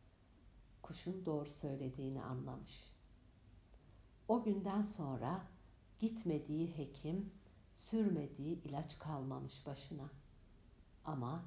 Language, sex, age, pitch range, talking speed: Turkish, female, 60-79, 110-170 Hz, 75 wpm